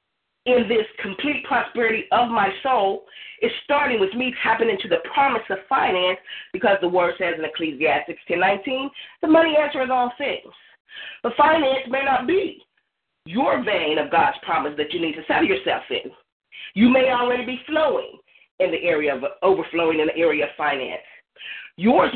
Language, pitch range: English, 200-290 Hz